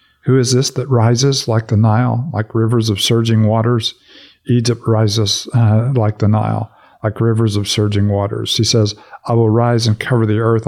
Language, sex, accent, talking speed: English, male, American, 185 wpm